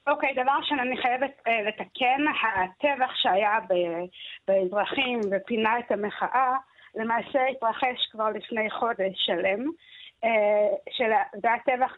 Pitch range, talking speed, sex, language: 210-265 Hz, 125 wpm, female, Hebrew